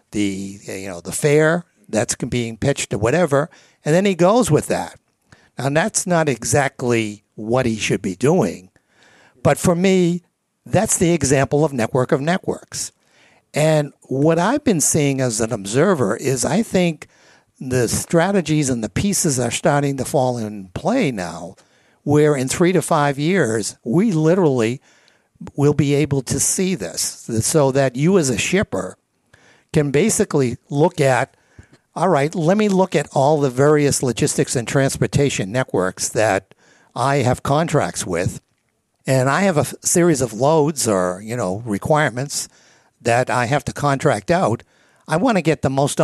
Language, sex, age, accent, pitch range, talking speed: English, male, 60-79, American, 125-160 Hz, 160 wpm